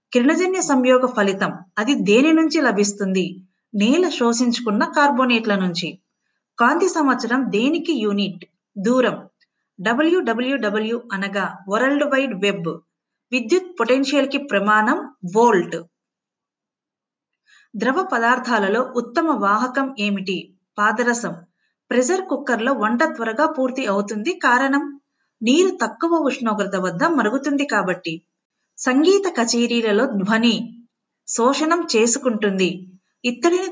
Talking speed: 65 wpm